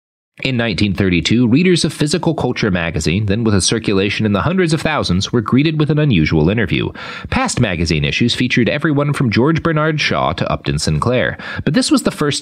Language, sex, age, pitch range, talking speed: English, male, 40-59, 100-155 Hz, 190 wpm